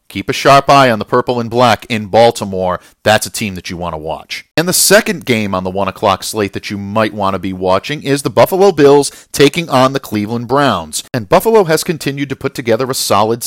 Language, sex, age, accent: English, male, 50-69, American